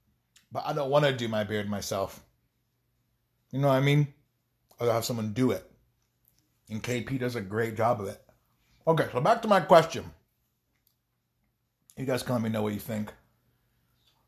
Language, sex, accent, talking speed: English, male, American, 180 wpm